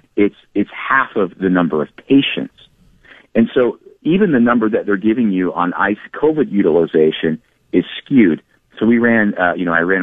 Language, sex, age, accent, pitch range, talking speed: English, male, 50-69, American, 80-100 Hz, 185 wpm